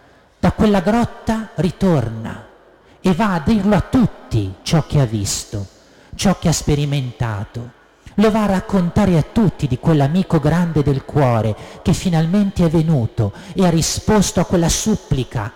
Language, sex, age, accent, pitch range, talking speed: Italian, male, 50-69, native, 105-150 Hz, 150 wpm